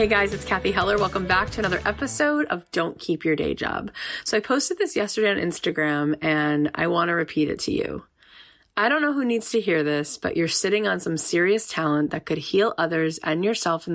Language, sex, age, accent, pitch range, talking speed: English, female, 30-49, American, 155-190 Hz, 230 wpm